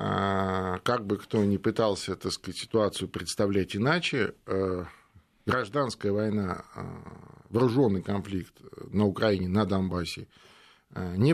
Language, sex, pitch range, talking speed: Russian, male, 95-115 Hz, 100 wpm